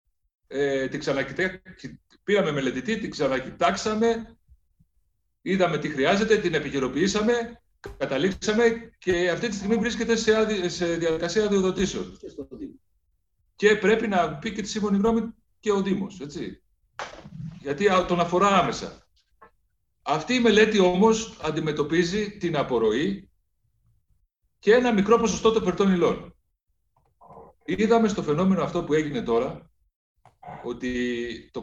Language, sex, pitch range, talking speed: Greek, male, 140-210 Hz, 120 wpm